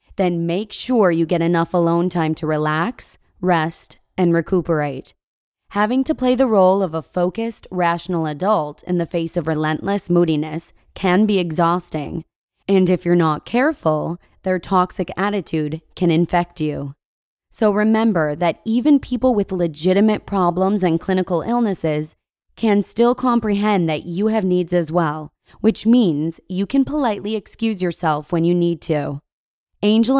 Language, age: English, 20-39